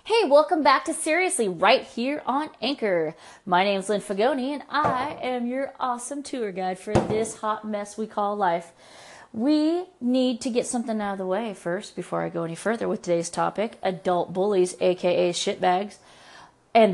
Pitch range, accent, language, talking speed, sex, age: 185-230 Hz, American, English, 175 wpm, female, 30-49